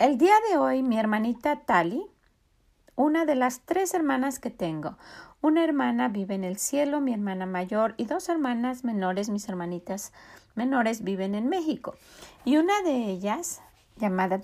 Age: 40-59